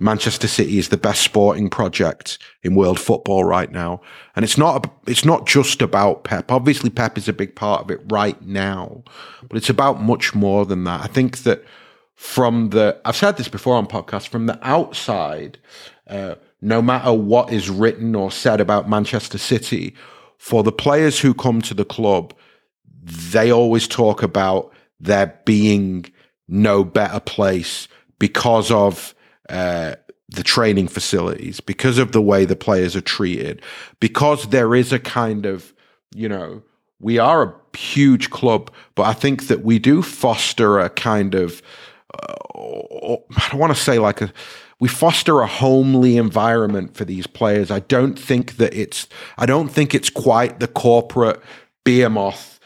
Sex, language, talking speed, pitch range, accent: male, English, 165 wpm, 100-125 Hz, British